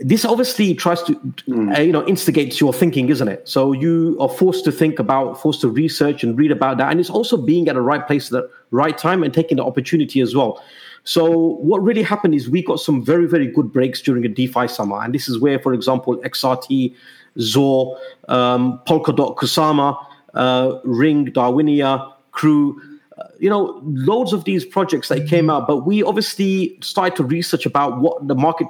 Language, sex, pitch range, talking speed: English, male, 130-165 Hz, 200 wpm